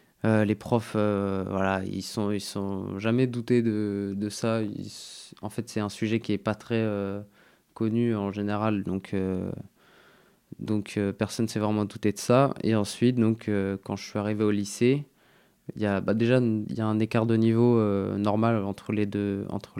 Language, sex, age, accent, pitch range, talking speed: French, male, 20-39, French, 100-115 Hz, 205 wpm